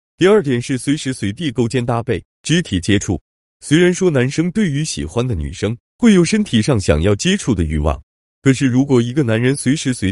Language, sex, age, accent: Chinese, male, 30-49, native